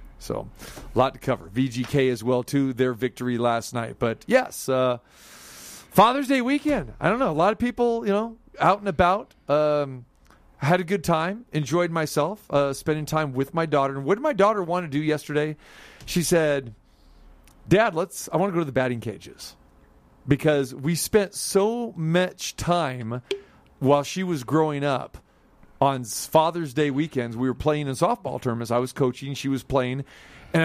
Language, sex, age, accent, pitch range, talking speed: English, male, 40-59, American, 125-170 Hz, 180 wpm